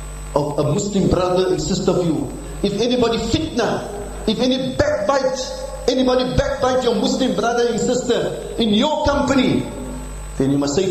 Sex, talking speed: male, 155 wpm